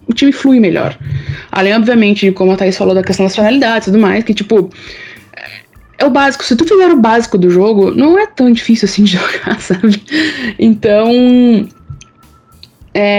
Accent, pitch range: Brazilian, 170-225 Hz